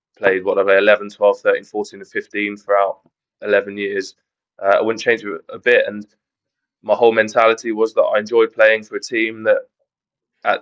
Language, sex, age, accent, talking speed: English, male, 20-39, British, 175 wpm